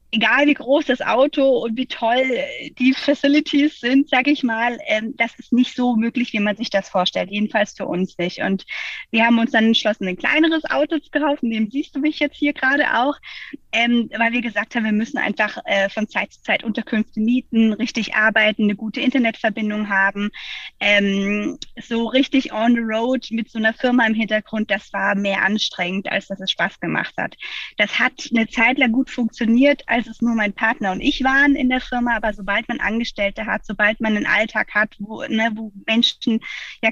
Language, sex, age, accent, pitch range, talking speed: German, female, 20-39, German, 210-250 Hz, 195 wpm